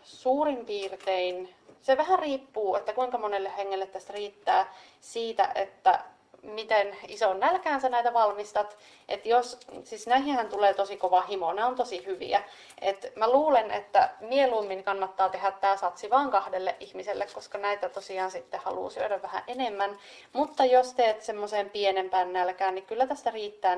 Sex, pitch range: female, 195-250 Hz